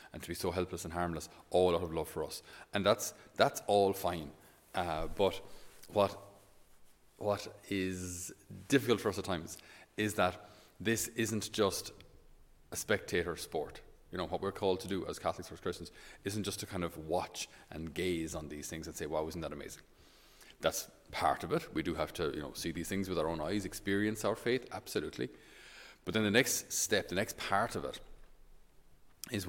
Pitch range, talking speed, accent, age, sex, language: 80-100 Hz, 195 wpm, Irish, 30-49, male, English